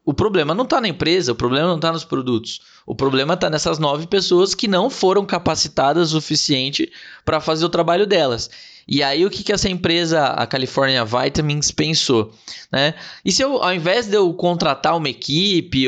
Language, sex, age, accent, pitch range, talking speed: Portuguese, male, 20-39, Brazilian, 145-185 Hz, 195 wpm